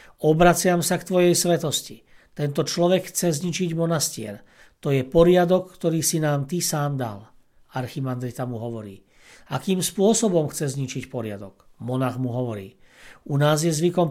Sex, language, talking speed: male, Slovak, 145 wpm